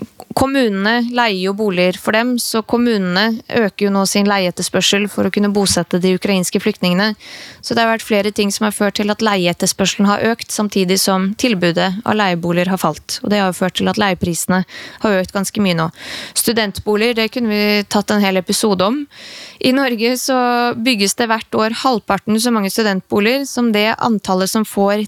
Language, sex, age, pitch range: English, female, 20-39, 195-235 Hz